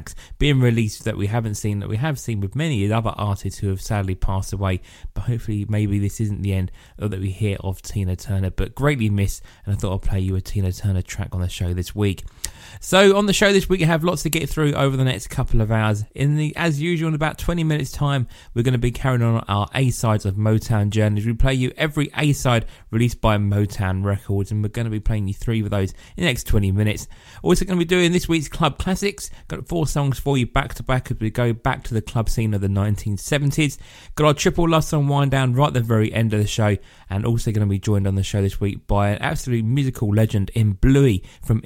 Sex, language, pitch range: male, English, 100-140 Hz